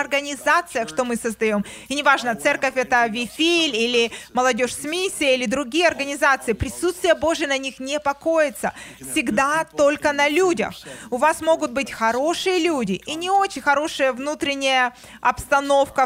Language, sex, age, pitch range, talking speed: Russian, female, 20-39, 235-310 Hz, 140 wpm